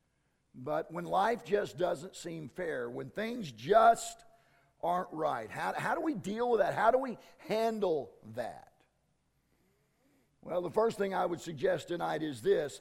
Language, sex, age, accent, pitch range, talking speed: English, male, 50-69, American, 160-245 Hz, 160 wpm